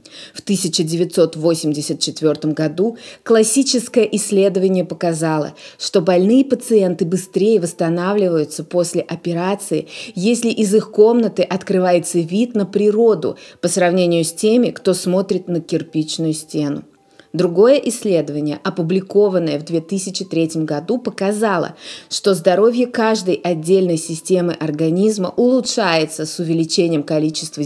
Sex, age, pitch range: female, 20-39, 165-215 Hz